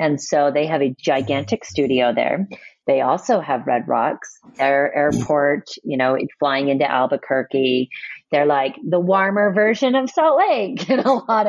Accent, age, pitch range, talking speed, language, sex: American, 30-49, 140-200 Hz, 160 wpm, English, female